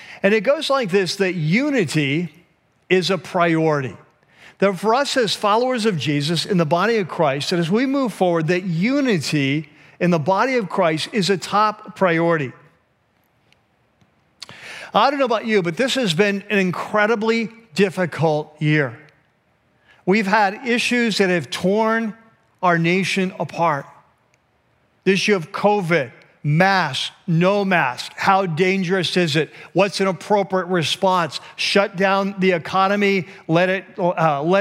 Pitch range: 170-205 Hz